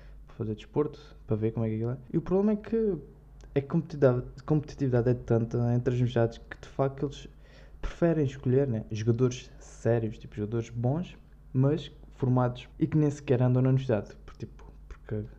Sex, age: male, 20-39